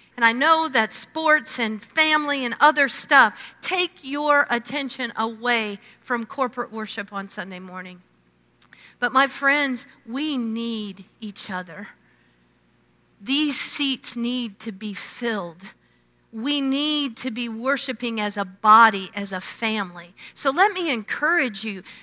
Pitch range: 200-290 Hz